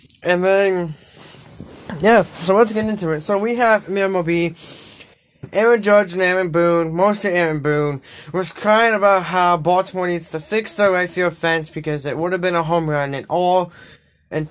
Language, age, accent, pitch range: English, 20-39, American, 155-190 Hz